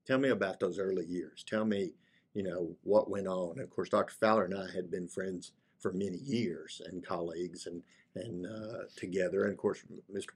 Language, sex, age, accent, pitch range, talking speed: English, male, 50-69, American, 90-125 Hz, 205 wpm